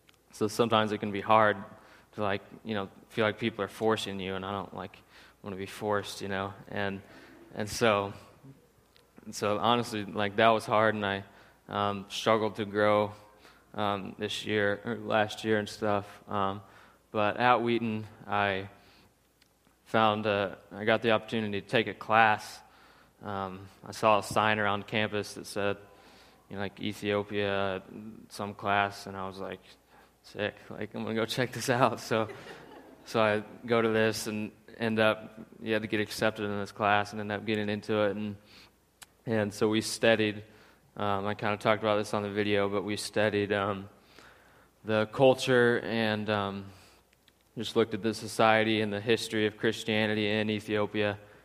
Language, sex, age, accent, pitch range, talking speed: English, male, 20-39, American, 100-110 Hz, 175 wpm